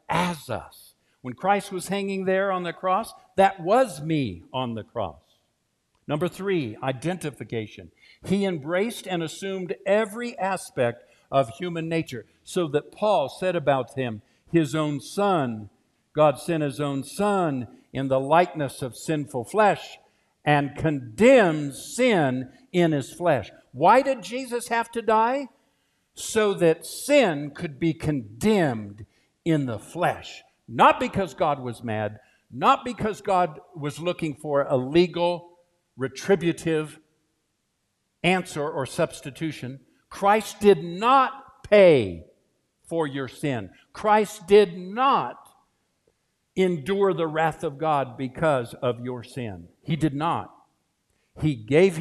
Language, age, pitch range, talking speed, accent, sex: English, 60-79, 130-185 Hz, 125 wpm, American, male